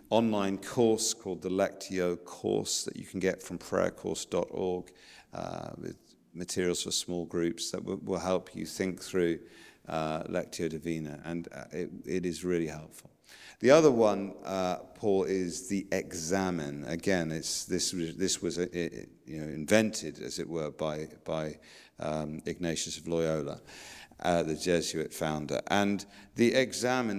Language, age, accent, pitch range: English, 50-69, British, 85-100 Hz